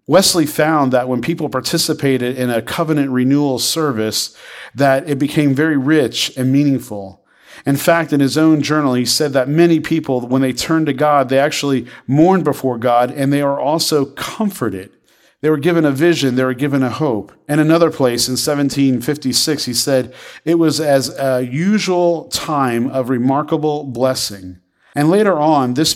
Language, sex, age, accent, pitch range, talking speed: English, male, 40-59, American, 125-150 Hz, 170 wpm